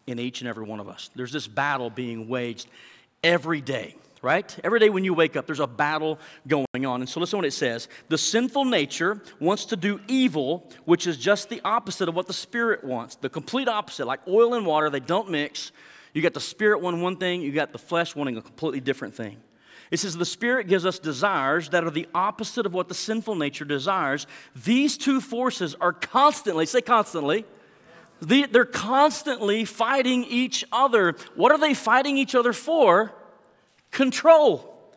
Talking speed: 195 wpm